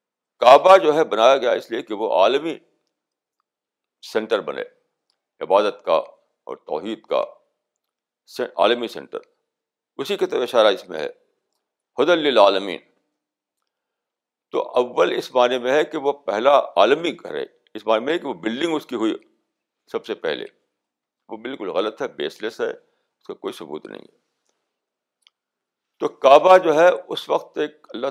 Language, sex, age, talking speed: Urdu, male, 60-79, 155 wpm